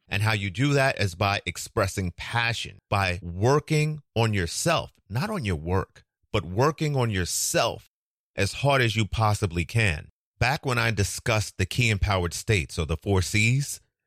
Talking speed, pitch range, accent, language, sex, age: 165 wpm, 95-115 Hz, American, English, male, 30-49